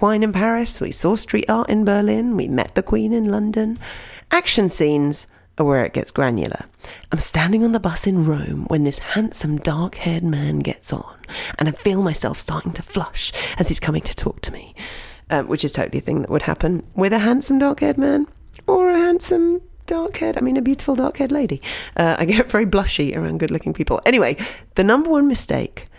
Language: English